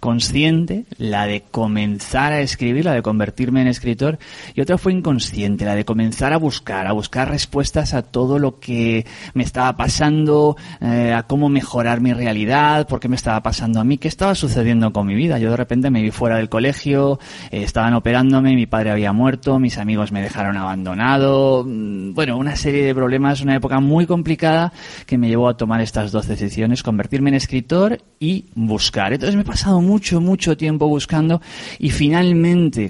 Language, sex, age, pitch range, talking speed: Spanish, male, 30-49, 115-150 Hz, 185 wpm